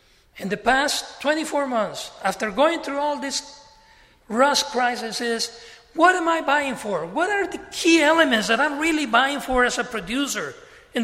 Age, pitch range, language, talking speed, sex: 40-59, 225-295 Hz, English, 175 wpm, male